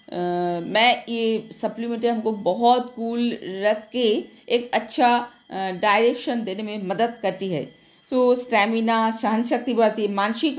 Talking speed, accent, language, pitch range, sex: 140 wpm, native, Hindi, 215-265 Hz, female